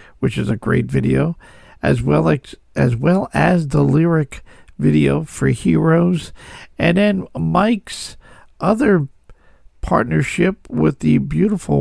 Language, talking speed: English, 120 wpm